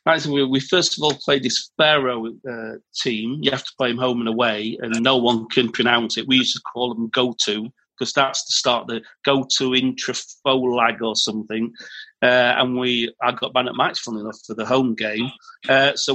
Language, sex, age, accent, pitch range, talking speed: English, male, 40-59, British, 120-140 Hz, 210 wpm